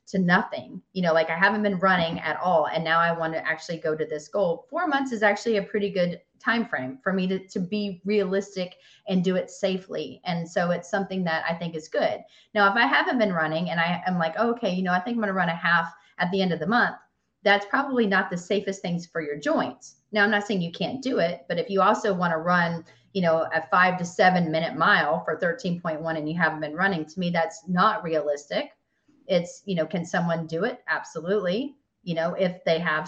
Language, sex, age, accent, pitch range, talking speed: English, female, 30-49, American, 165-205 Hz, 240 wpm